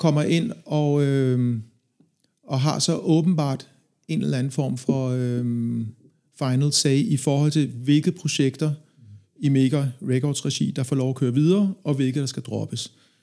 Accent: native